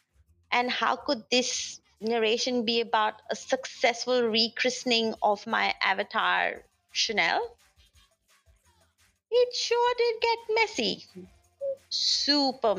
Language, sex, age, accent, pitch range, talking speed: English, female, 30-49, Indian, 205-300 Hz, 95 wpm